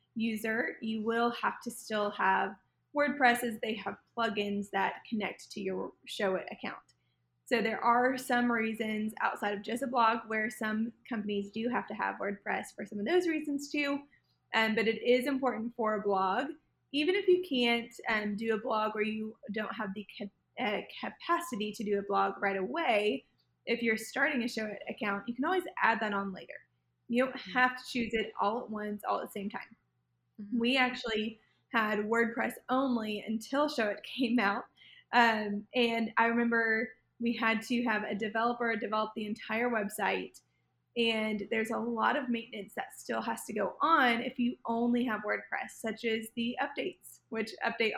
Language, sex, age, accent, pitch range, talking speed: English, female, 20-39, American, 210-245 Hz, 180 wpm